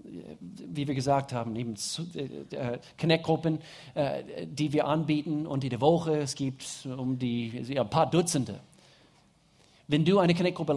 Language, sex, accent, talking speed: German, male, German, 150 wpm